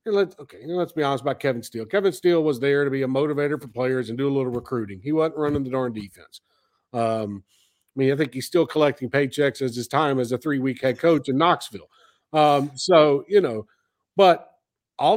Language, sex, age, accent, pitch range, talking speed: English, male, 50-69, American, 130-180 Hz, 210 wpm